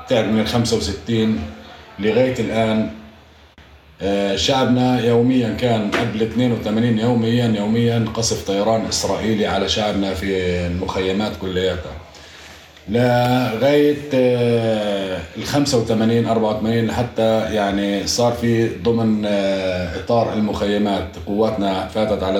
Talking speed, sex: 95 wpm, male